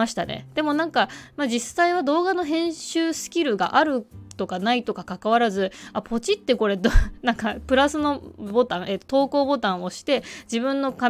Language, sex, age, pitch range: Japanese, female, 20-39, 195-280 Hz